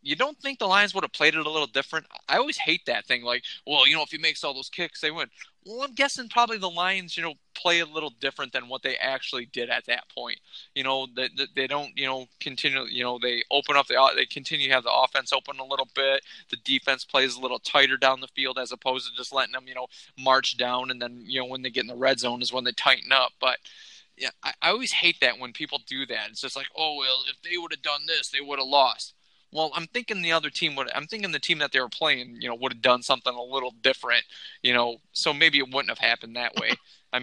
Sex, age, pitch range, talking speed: male, 20-39, 130-170 Hz, 270 wpm